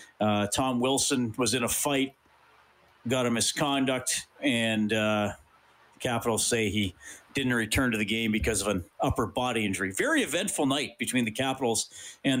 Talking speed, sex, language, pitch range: 160 wpm, male, English, 120-175 Hz